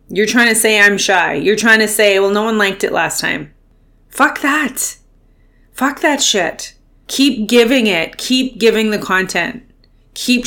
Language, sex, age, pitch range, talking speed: English, female, 30-49, 195-235 Hz, 170 wpm